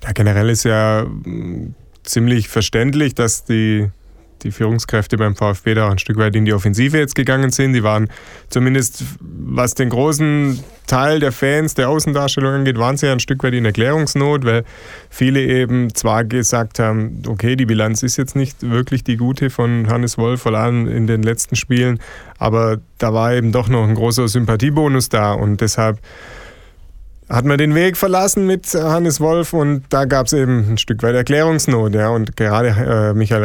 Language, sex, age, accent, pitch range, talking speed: German, male, 20-39, German, 110-135 Hz, 180 wpm